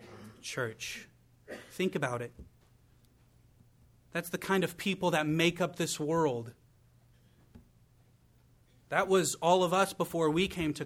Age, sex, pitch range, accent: 30-49, male, 120-175 Hz, American